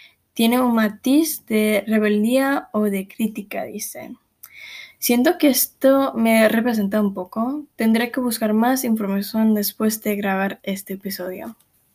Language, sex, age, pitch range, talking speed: Spanish, female, 10-29, 210-245 Hz, 130 wpm